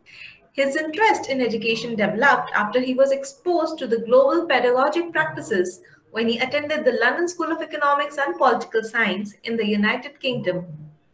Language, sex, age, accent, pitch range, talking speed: English, female, 20-39, Indian, 215-280 Hz, 155 wpm